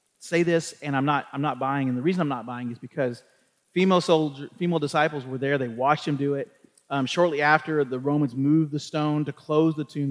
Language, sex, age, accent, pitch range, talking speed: English, male, 30-49, American, 130-170 Hz, 230 wpm